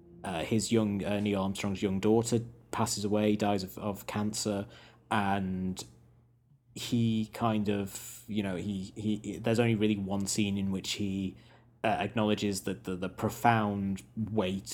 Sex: male